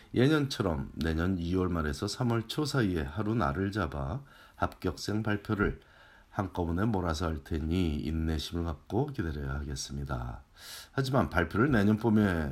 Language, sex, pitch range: Korean, male, 80-110 Hz